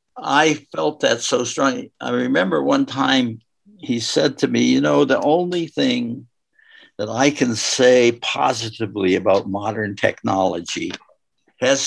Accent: American